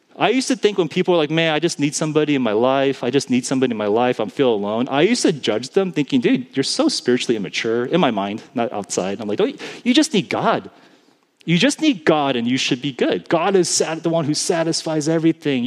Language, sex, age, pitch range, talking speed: English, male, 30-49, 140-185 Hz, 255 wpm